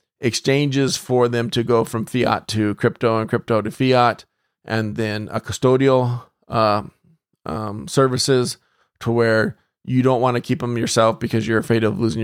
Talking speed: 165 wpm